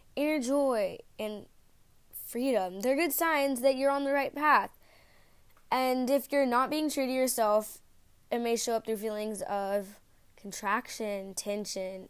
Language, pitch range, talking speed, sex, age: English, 200-255 Hz, 150 wpm, female, 10-29